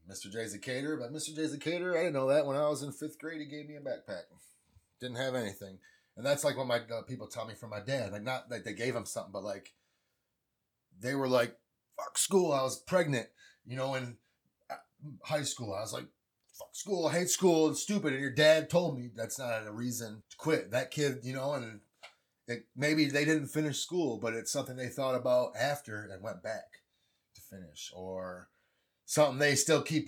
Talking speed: 215 wpm